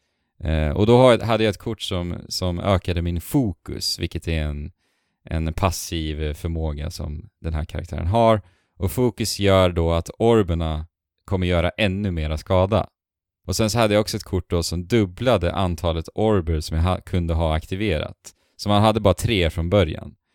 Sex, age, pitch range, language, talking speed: male, 20-39, 85-100 Hz, Swedish, 175 wpm